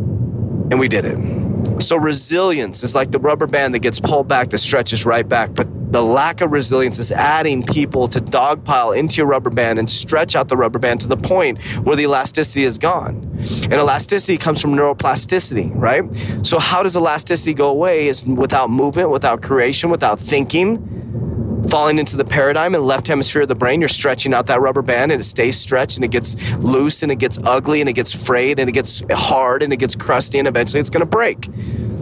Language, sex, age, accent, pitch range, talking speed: English, male, 30-49, American, 115-150 Hz, 210 wpm